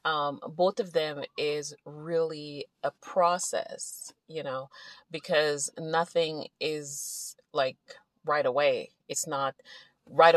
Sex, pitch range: female, 145-180 Hz